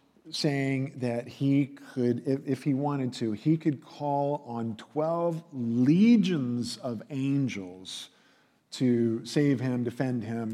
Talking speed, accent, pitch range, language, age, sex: 120 wpm, American, 115-165 Hz, English, 50-69, male